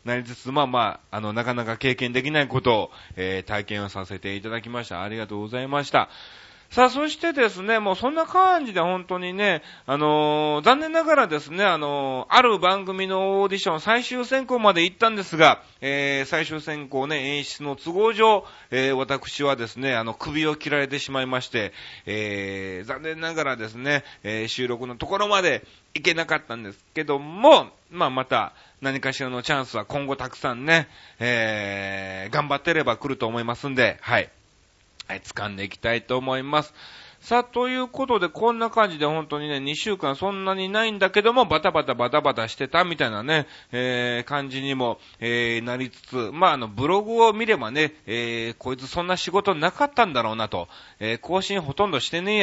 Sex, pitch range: male, 120-190 Hz